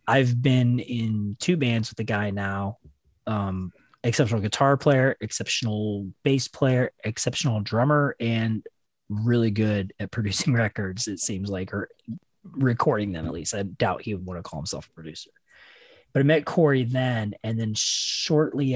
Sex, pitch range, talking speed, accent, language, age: male, 105-135 Hz, 160 wpm, American, English, 30-49